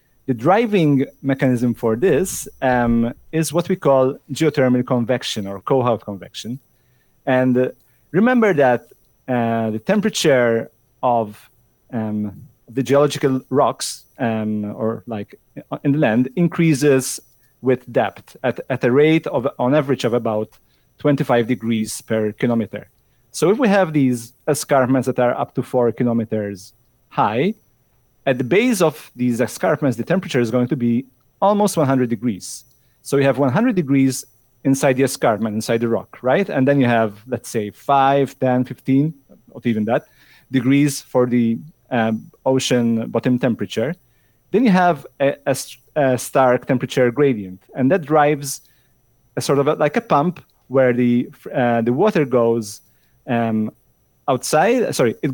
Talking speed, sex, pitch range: 150 wpm, male, 115-145 Hz